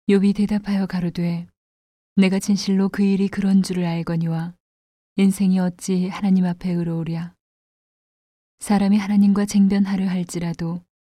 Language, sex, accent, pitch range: Korean, female, native, 170-195 Hz